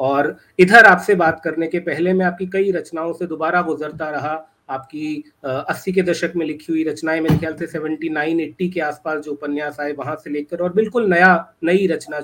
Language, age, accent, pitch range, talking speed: Hindi, 30-49, native, 155-200 Hz, 190 wpm